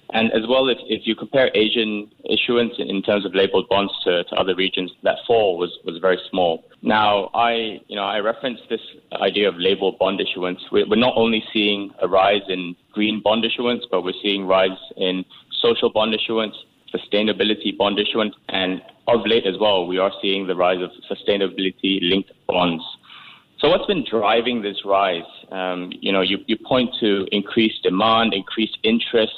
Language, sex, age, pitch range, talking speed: English, male, 30-49, 95-110 Hz, 180 wpm